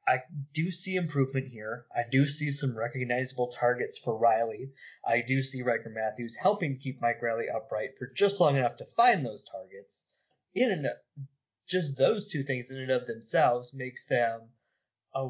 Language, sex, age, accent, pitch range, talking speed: English, male, 20-39, American, 120-155 Hz, 175 wpm